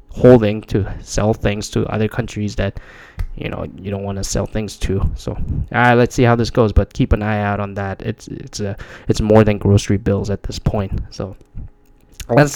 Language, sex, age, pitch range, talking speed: English, male, 10-29, 100-115 Hz, 215 wpm